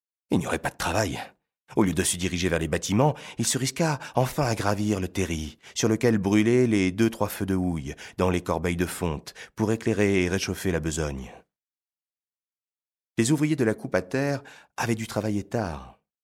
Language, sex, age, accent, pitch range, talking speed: French, male, 30-49, French, 85-110 Hz, 190 wpm